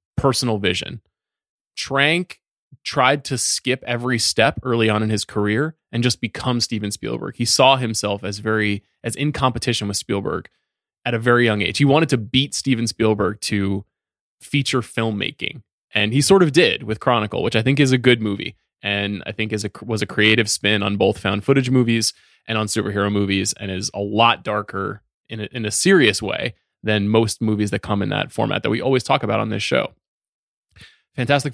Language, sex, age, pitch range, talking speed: English, male, 20-39, 105-125 Hz, 190 wpm